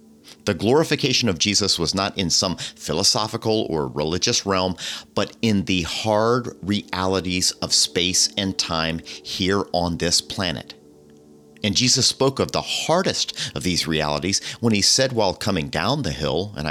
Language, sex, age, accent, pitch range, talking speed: English, male, 40-59, American, 80-110 Hz, 155 wpm